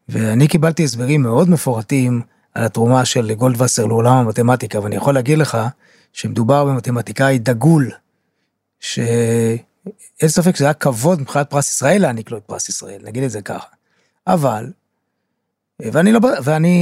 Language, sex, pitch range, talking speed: Hebrew, male, 120-180 Hz, 145 wpm